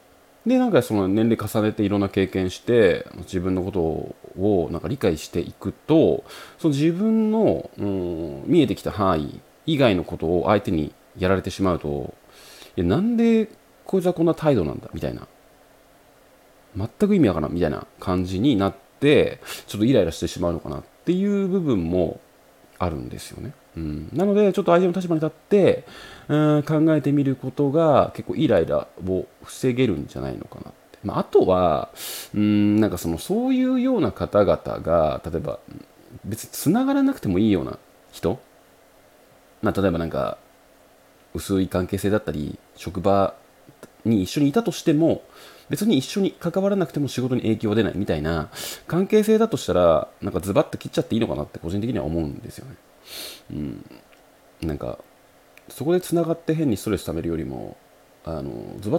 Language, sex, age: Japanese, male, 30-49